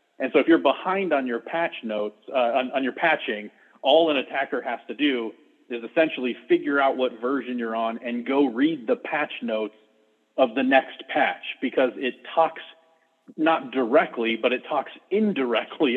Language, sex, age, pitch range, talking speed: English, male, 40-59, 110-140 Hz, 175 wpm